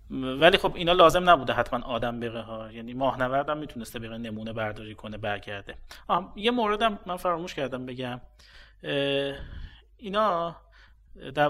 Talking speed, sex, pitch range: 140 wpm, male, 120-160 Hz